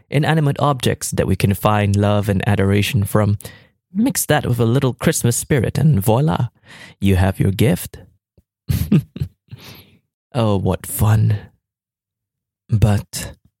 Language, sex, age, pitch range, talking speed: English, male, 20-39, 100-130 Hz, 120 wpm